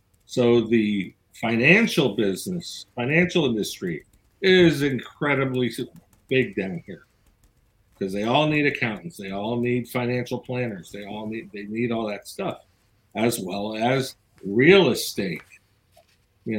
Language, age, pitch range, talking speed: English, 50-69, 105-130 Hz, 125 wpm